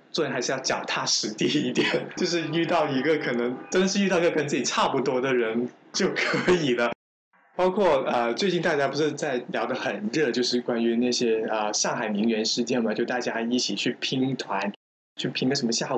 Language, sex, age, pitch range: Chinese, male, 20-39, 115-150 Hz